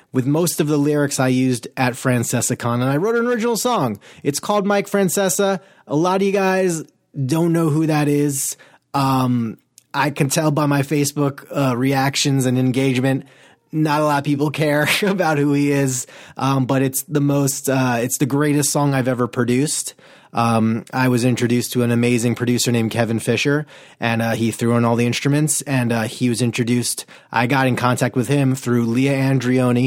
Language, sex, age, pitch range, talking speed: English, male, 30-49, 115-140 Hz, 195 wpm